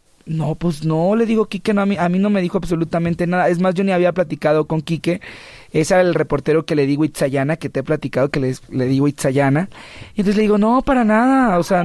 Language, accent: Spanish, Mexican